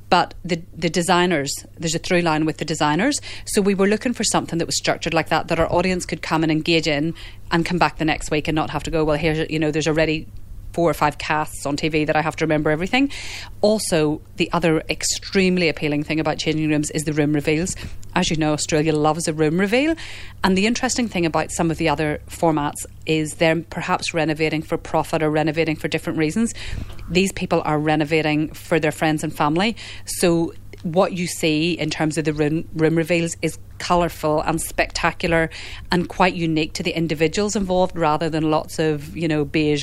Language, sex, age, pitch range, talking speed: English, female, 30-49, 155-170 Hz, 210 wpm